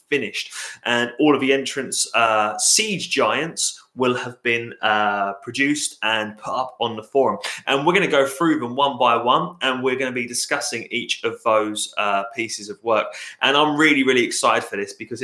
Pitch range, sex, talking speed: 115-140 Hz, male, 200 wpm